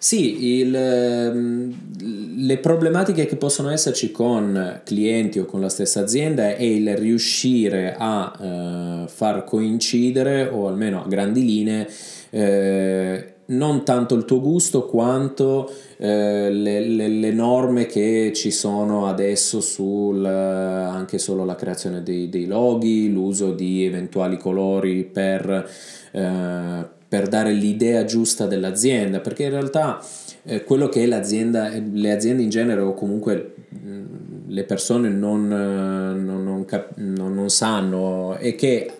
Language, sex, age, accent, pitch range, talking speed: Italian, male, 20-39, native, 95-120 Hz, 130 wpm